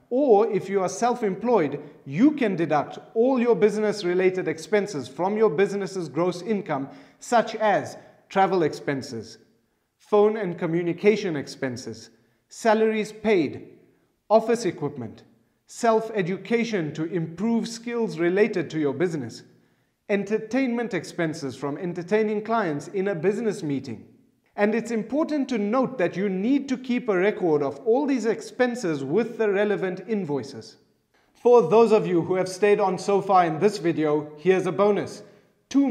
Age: 40-59